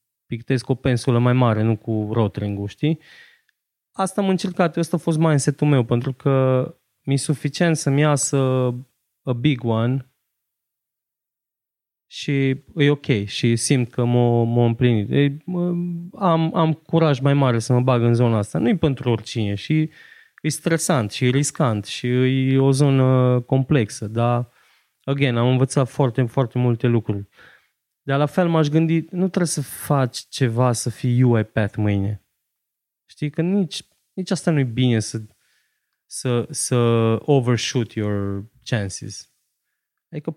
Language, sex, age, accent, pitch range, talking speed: Romanian, male, 20-39, native, 120-150 Hz, 145 wpm